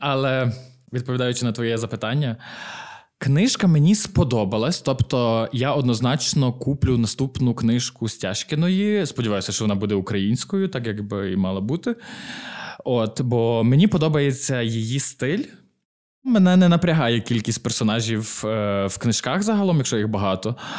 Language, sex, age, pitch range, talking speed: Ukrainian, male, 20-39, 115-150 Hz, 125 wpm